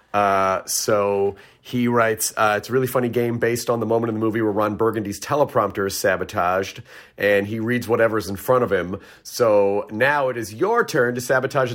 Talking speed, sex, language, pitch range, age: 200 wpm, male, English, 110-140 Hz, 40-59